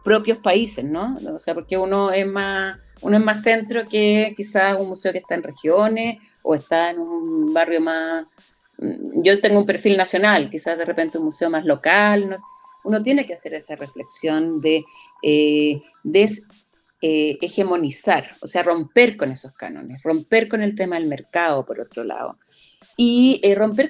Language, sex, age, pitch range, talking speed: Spanish, female, 30-49, 160-220 Hz, 175 wpm